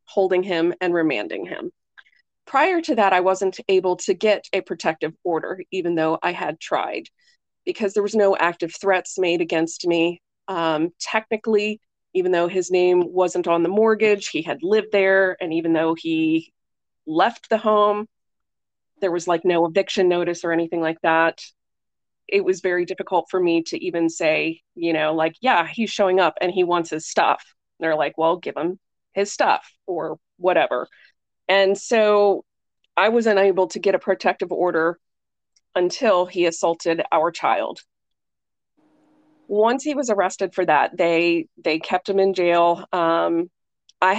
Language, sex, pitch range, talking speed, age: English, female, 170-205 Hz, 165 wpm, 20-39